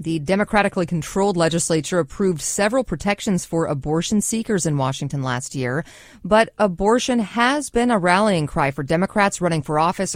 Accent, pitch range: American, 160-215 Hz